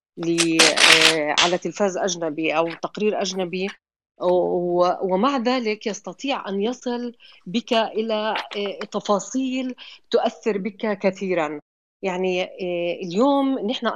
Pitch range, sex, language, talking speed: 175-225 Hz, female, Arabic, 90 wpm